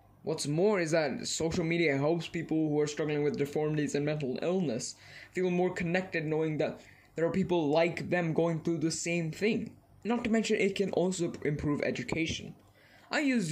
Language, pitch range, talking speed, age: English, 140-190 Hz, 180 wpm, 20-39